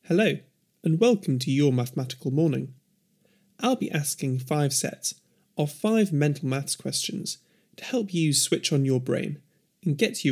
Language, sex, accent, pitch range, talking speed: English, male, British, 140-195 Hz, 155 wpm